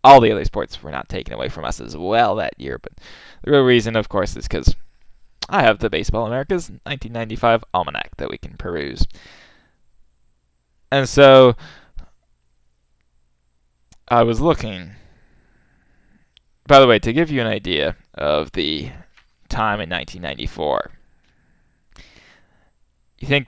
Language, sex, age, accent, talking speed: English, male, 10-29, American, 135 wpm